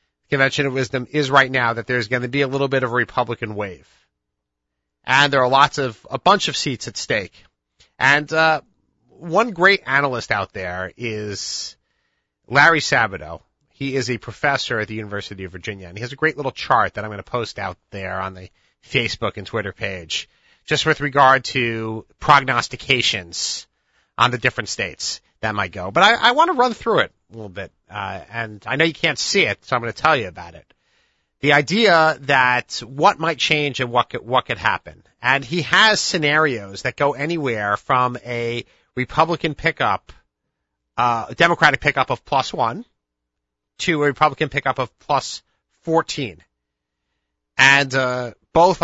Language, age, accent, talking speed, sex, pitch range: English, 30-49, American, 180 wpm, male, 100-145 Hz